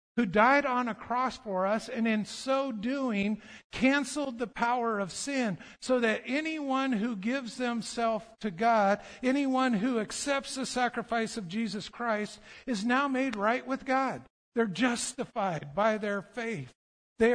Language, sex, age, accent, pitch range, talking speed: English, male, 50-69, American, 220-265 Hz, 150 wpm